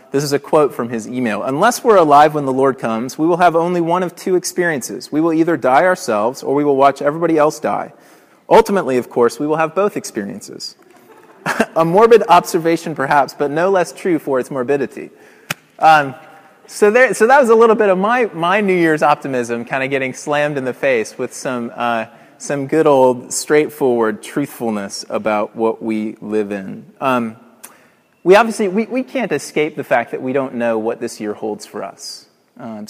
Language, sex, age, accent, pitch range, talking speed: English, male, 30-49, American, 130-175 Hz, 195 wpm